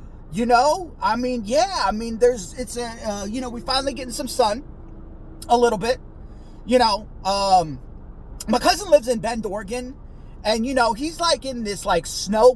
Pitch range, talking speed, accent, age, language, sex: 205-290 Hz, 185 wpm, American, 30-49, English, male